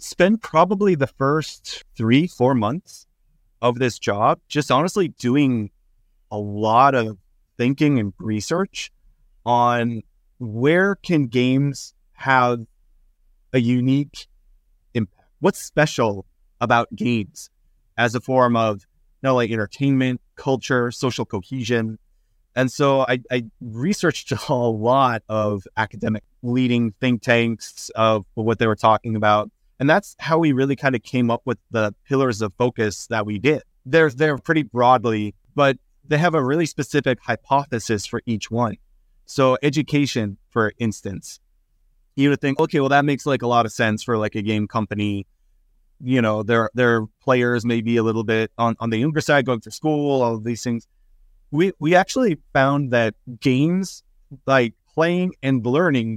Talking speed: 150 wpm